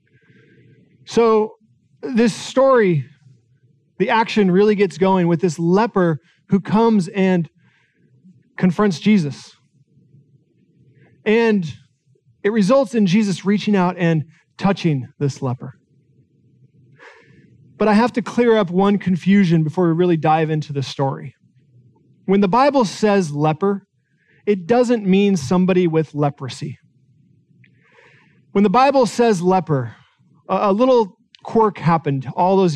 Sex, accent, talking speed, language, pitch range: male, American, 115 wpm, English, 150-205 Hz